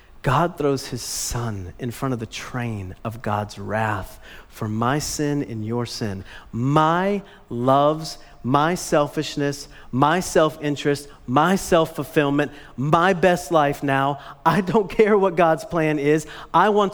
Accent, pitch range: American, 115-175 Hz